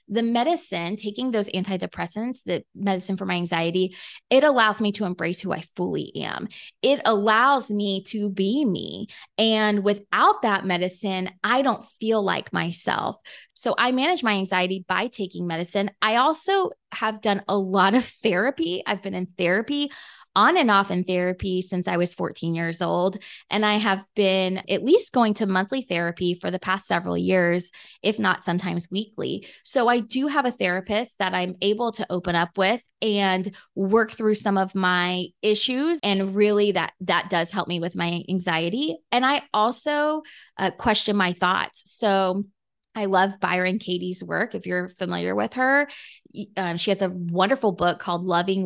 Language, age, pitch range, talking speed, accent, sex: English, 20-39, 185-225 Hz, 175 wpm, American, female